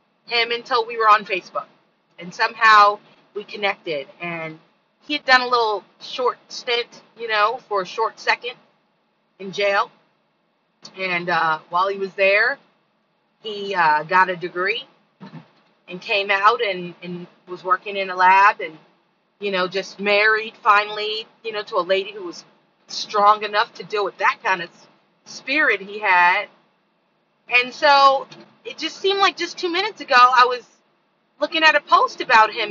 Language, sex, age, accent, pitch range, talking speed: English, female, 30-49, American, 190-235 Hz, 165 wpm